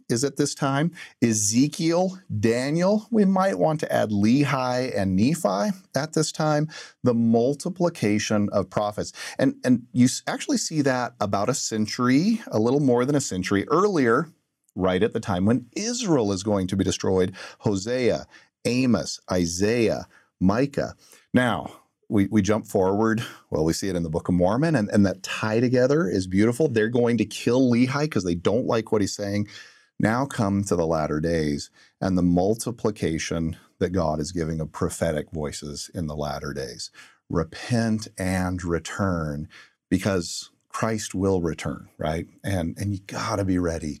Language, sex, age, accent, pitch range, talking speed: English, male, 40-59, American, 95-125 Hz, 165 wpm